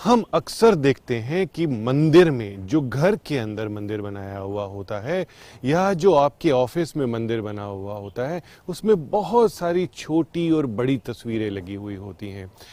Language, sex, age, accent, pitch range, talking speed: Hindi, male, 30-49, native, 115-175 Hz, 175 wpm